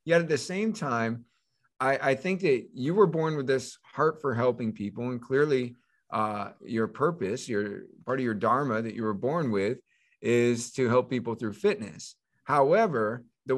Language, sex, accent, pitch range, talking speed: English, male, American, 115-145 Hz, 180 wpm